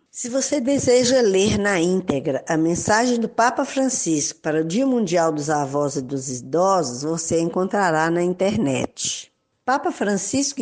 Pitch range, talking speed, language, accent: 165-235 Hz, 145 wpm, Portuguese, Brazilian